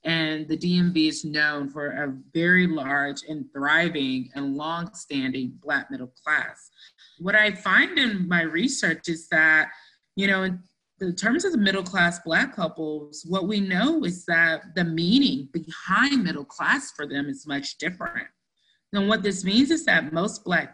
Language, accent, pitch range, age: English, American, 155-195 Hz, 30-49